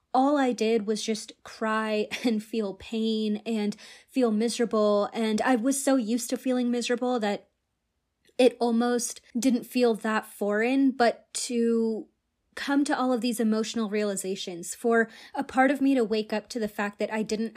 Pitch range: 215-250 Hz